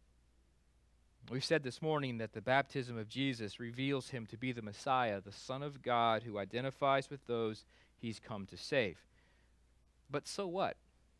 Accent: American